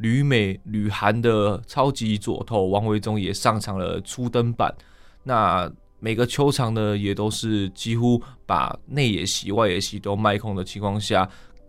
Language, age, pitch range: Chinese, 20-39, 100-115 Hz